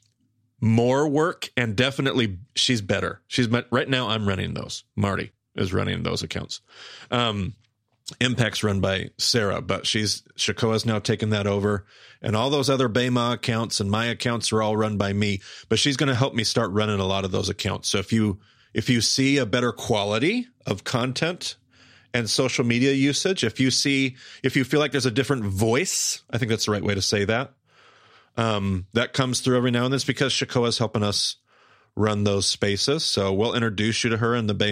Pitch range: 105-130 Hz